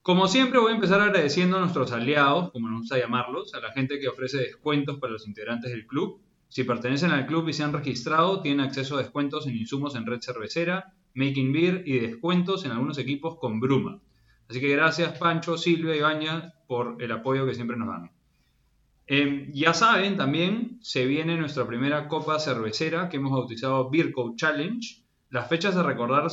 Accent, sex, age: Argentinian, male, 20-39